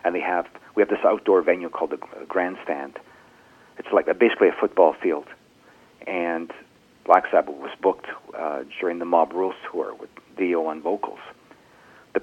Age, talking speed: 50-69, 165 wpm